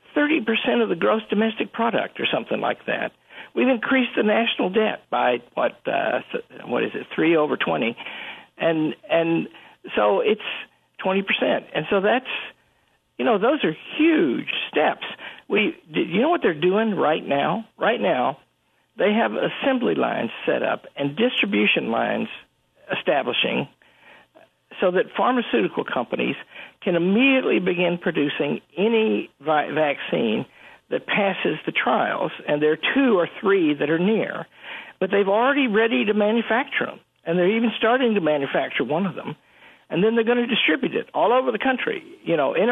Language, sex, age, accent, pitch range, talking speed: English, male, 60-79, American, 180-255 Hz, 160 wpm